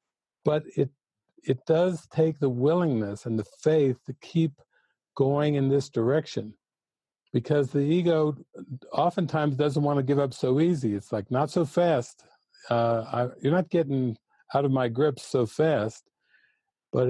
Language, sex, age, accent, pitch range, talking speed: English, male, 50-69, American, 125-155 Hz, 155 wpm